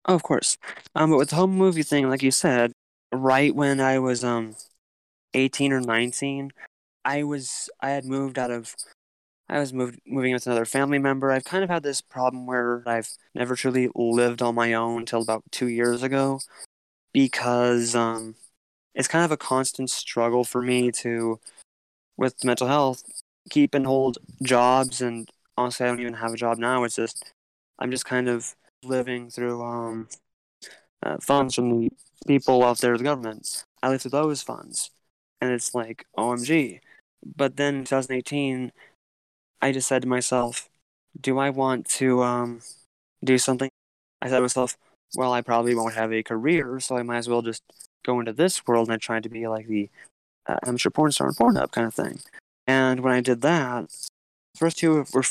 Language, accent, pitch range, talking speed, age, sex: English, American, 115-135 Hz, 185 wpm, 20-39, male